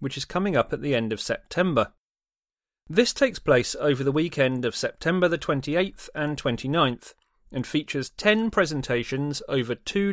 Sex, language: male, English